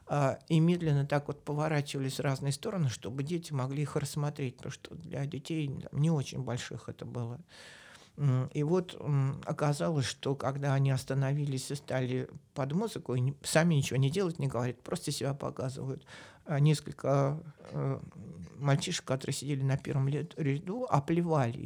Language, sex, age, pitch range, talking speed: Russian, male, 60-79, 130-155 Hz, 140 wpm